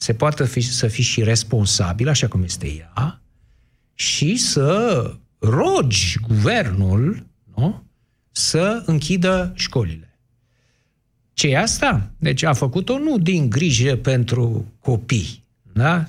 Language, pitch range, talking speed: Romanian, 120-155 Hz, 115 wpm